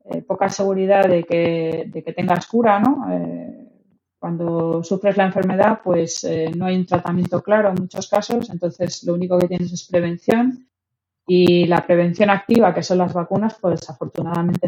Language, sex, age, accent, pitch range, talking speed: Spanish, female, 20-39, Spanish, 165-190 Hz, 170 wpm